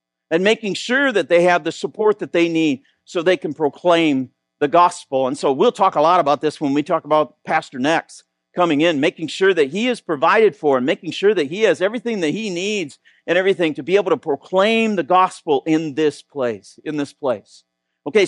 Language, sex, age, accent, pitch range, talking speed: English, male, 50-69, American, 130-195 Hz, 215 wpm